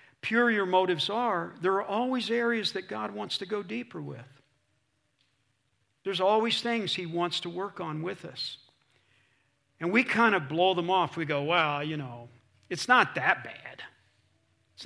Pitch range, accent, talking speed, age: 145-205 Hz, American, 170 wpm, 50-69